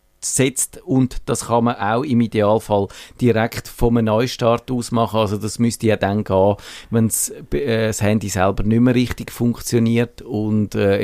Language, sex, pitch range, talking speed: German, male, 105-120 Hz, 160 wpm